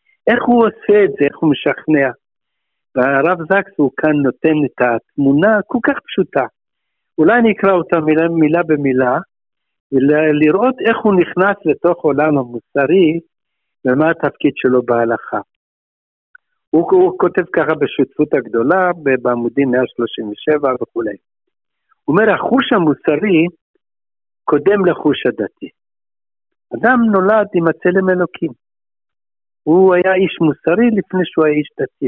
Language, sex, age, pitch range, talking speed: Hebrew, male, 60-79, 145-210 Hz, 125 wpm